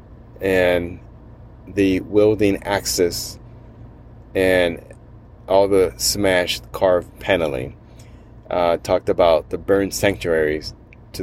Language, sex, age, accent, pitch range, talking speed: English, male, 30-49, American, 95-110 Hz, 90 wpm